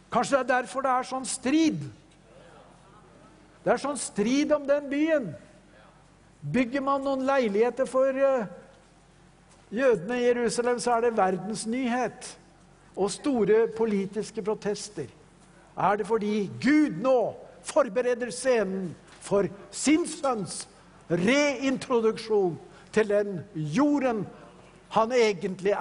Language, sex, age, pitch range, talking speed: English, male, 60-79, 185-255 Hz, 110 wpm